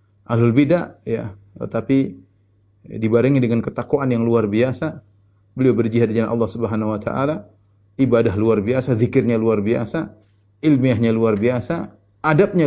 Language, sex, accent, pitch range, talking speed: Indonesian, male, native, 100-135 Hz, 135 wpm